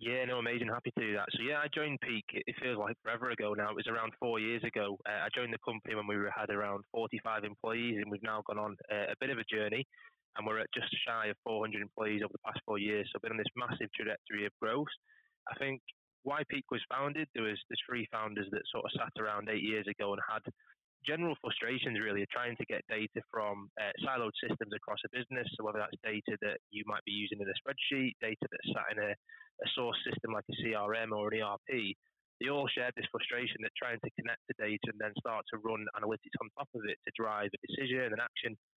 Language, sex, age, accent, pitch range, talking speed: English, male, 20-39, British, 105-125 Hz, 240 wpm